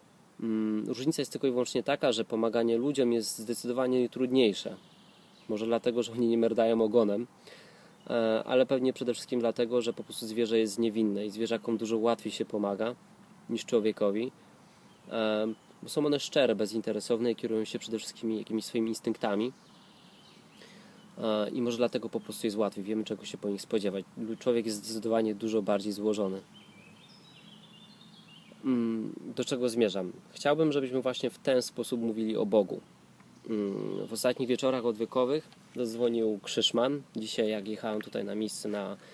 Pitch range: 110-130 Hz